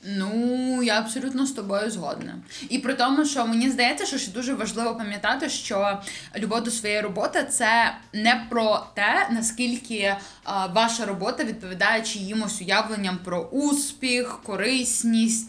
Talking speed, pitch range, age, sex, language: 145 wpm, 190-235 Hz, 20-39, female, Ukrainian